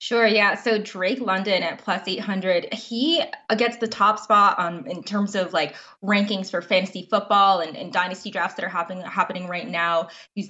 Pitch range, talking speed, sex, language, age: 175-215 Hz, 190 wpm, female, English, 20-39